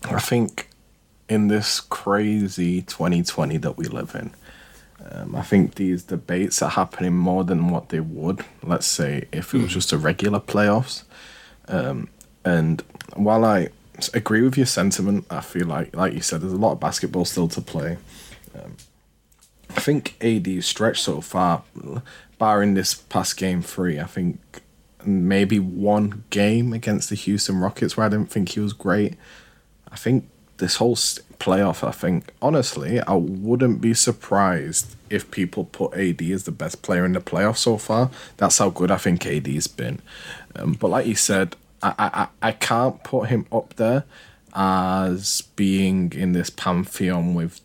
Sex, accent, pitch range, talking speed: male, British, 90-110 Hz, 165 wpm